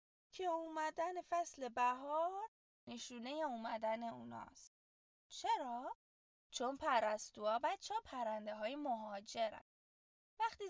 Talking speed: 90 wpm